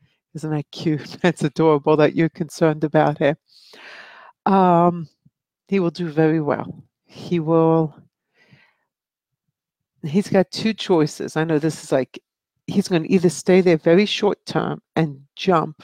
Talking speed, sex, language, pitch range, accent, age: 140 wpm, female, English, 155-180 Hz, American, 60-79